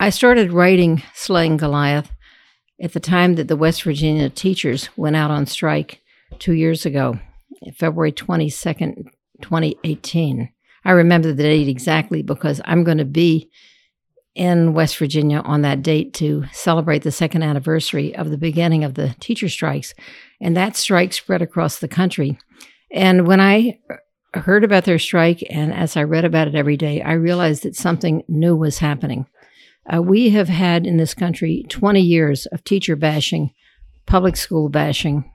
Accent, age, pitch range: American, 60-79, 150-175 Hz